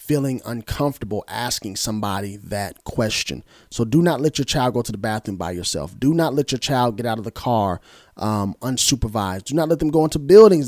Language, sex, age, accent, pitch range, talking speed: English, male, 30-49, American, 115-155 Hz, 210 wpm